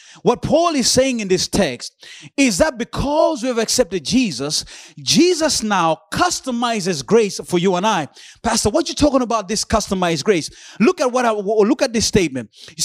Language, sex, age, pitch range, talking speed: English, male, 30-49, 205-285 Hz, 185 wpm